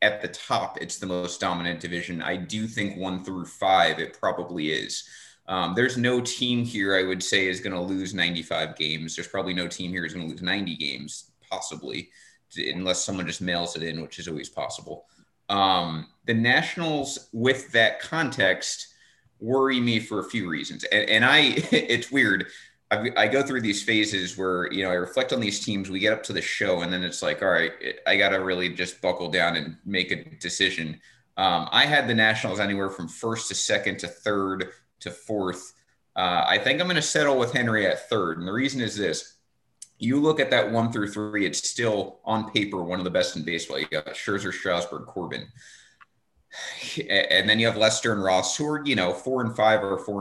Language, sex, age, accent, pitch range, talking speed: English, male, 30-49, American, 90-115 Hz, 205 wpm